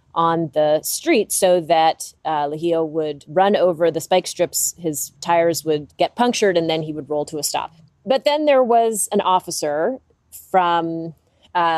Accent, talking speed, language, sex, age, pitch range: American, 175 wpm, English, female, 30-49, 155-195 Hz